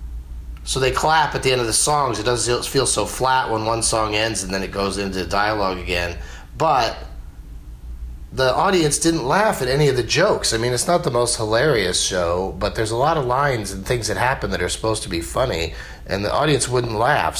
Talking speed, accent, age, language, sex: 220 wpm, American, 30-49, English, male